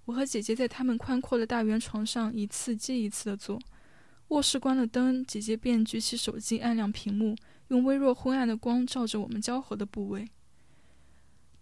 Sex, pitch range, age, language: female, 220-255 Hz, 10-29, Chinese